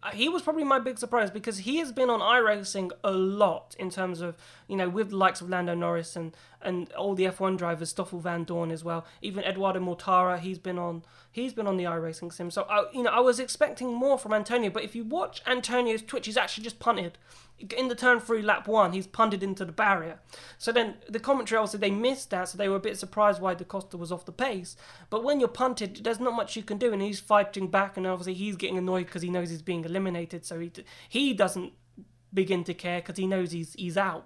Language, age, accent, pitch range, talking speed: English, 20-39, British, 185-230 Hz, 245 wpm